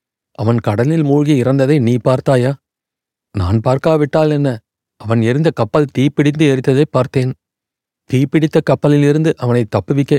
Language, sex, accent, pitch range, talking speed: Tamil, male, native, 120-145 Hz, 110 wpm